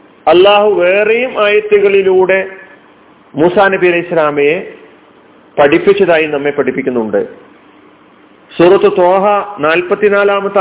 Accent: native